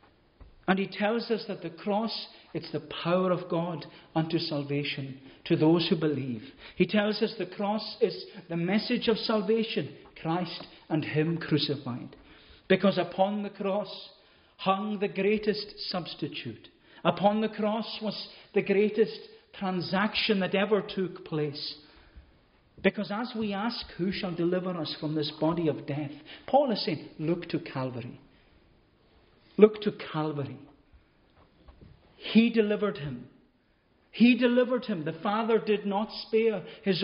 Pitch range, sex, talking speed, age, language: 155-210 Hz, male, 140 wpm, 50-69, English